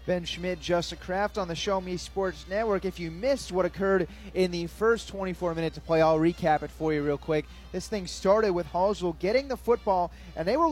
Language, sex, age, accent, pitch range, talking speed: English, male, 30-49, American, 155-185 Hz, 225 wpm